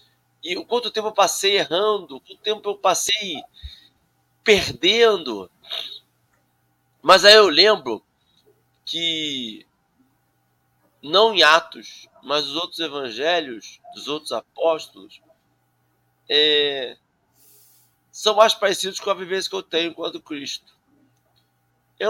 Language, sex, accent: Portuguese, male, Brazilian